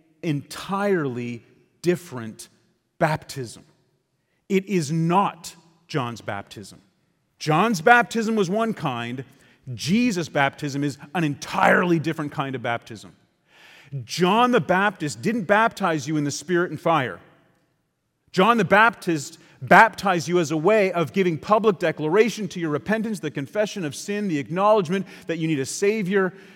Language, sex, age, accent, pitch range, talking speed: English, male, 40-59, American, 130-180 Hz, 135 wpm